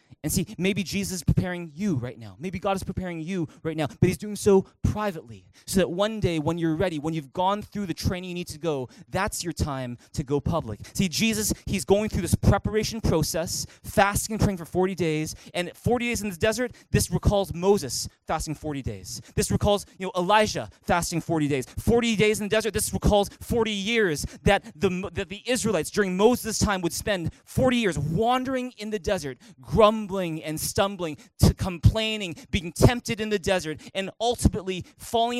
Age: 20-39